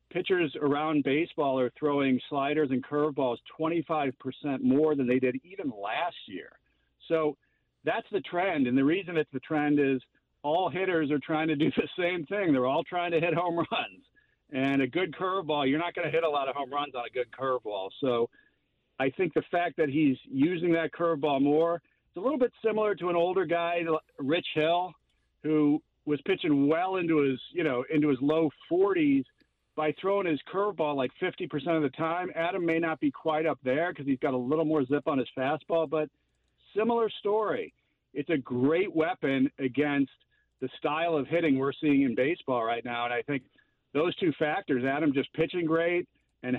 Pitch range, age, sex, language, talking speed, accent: 135-170 Hz, 50-69, male, English, 190 wpm, American